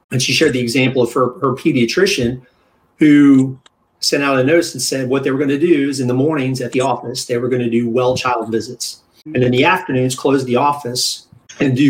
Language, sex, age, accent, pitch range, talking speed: English, male, 30-49, American, 125-145 Hz, 230 wpm